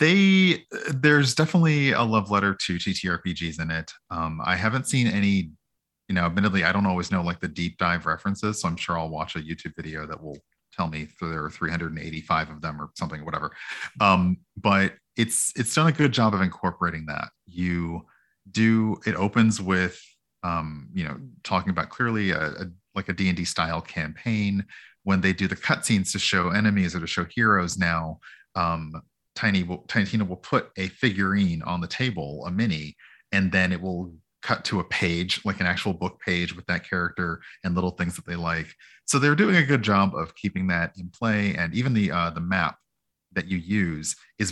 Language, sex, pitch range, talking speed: English, male, 85-105 Hz, 195 wpm